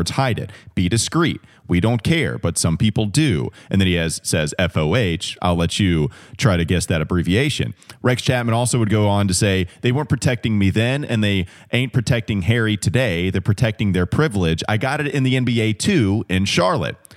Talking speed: 195 wpm